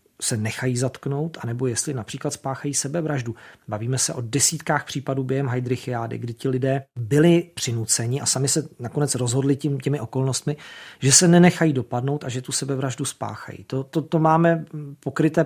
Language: Czech